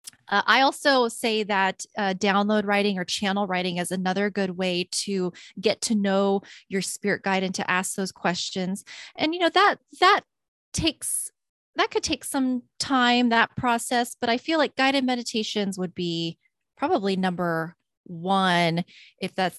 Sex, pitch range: female, 190-250 Hz